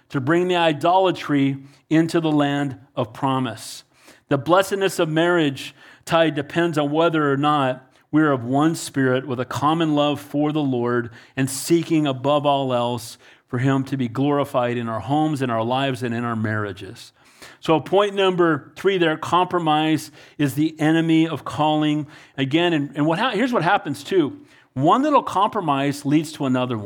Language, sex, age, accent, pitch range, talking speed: English, male, 40-59, American, 135-170 Hz, 170 wpm